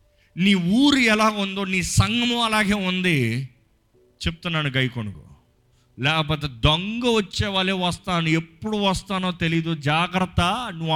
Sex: male